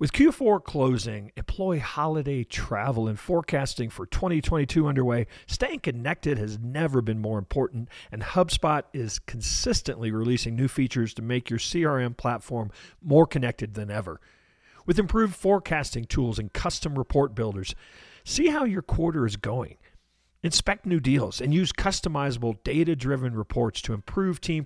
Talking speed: 145 wpm